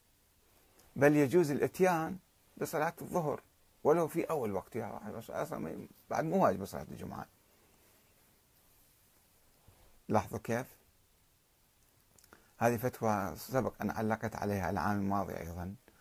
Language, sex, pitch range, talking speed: Arabic, male, 100-130 Hz, 95 wpm